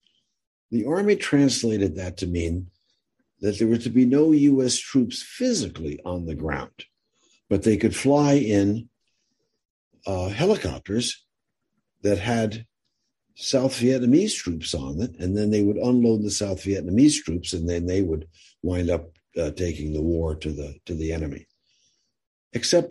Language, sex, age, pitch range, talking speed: English, male, 60-79, 90-125 Hz, 150 wpm